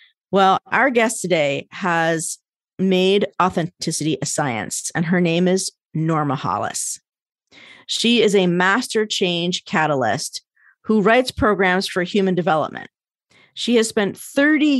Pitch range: 160-205 Hz